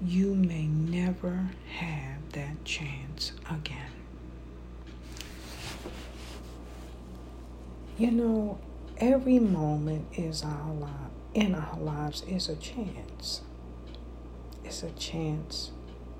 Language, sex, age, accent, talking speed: English, female, 60-79, American, 85 wpm